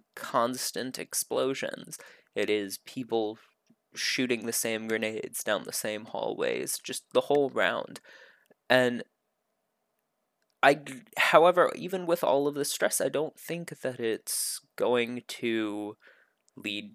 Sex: male